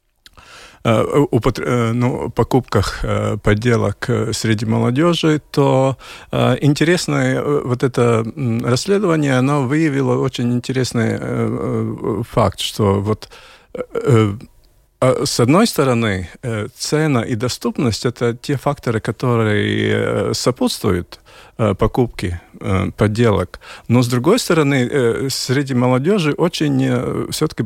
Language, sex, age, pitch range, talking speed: Russian, male, 50-69, 110-140 Hz, 85 wpm